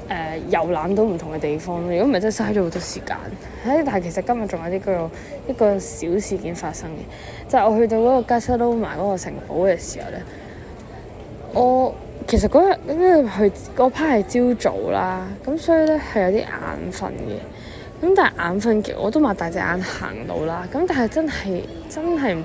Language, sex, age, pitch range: Chinese, female, 20-39, 175-240 Hz